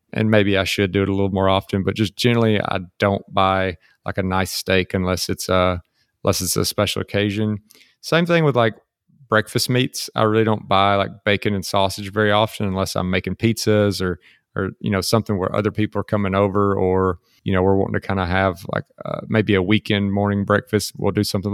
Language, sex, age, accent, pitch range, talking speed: English, male, 30-49, American, 95-110 Hz, 215 wpm